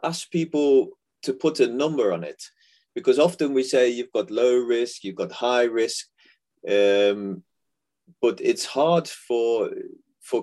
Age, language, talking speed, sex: 30-49, English, 150 wpm, male